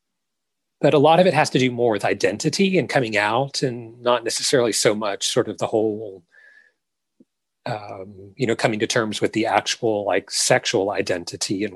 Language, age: English, 30-49